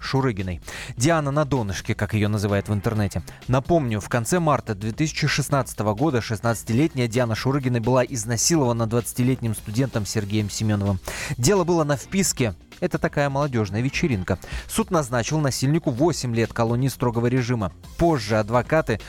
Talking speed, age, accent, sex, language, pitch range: 130 wpm, 20-39, native, male, Russian, 110-150 Hz